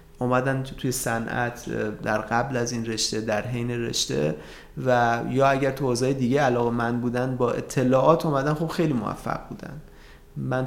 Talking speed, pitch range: 150 wpm, 120-150 Hz